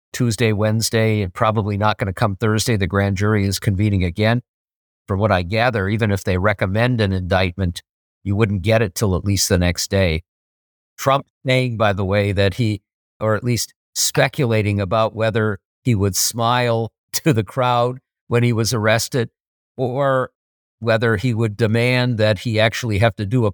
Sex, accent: male, American